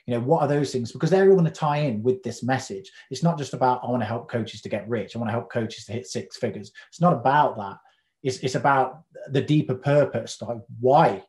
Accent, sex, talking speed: British, male, 260 wpm